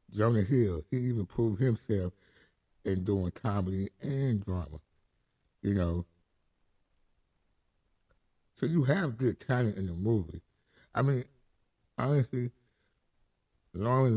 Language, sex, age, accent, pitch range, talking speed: English, male, 60-79, American, 85-105 Hz, 105 wpm